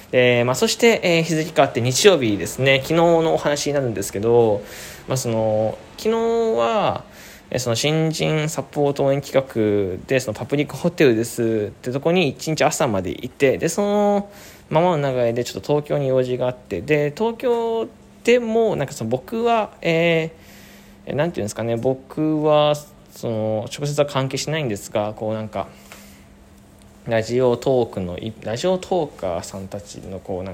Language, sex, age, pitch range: Japanese, male, 20-39, 105-150 Hz